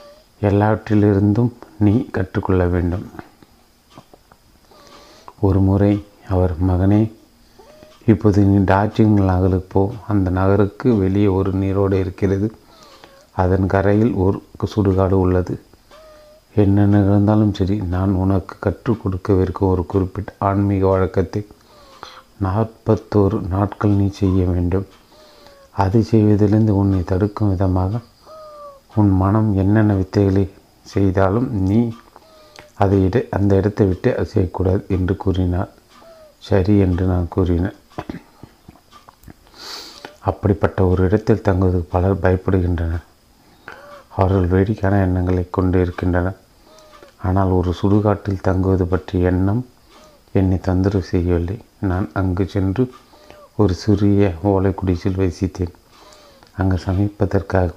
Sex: male